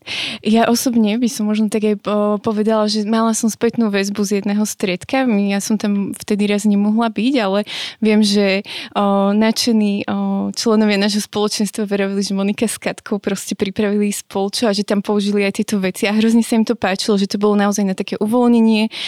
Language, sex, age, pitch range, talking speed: Slovak, female, 20-39, 200-225 Hz, 180 wpm